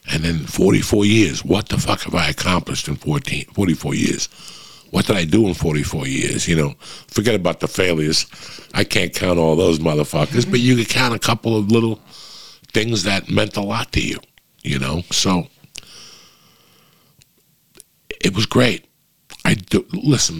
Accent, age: American, 60-79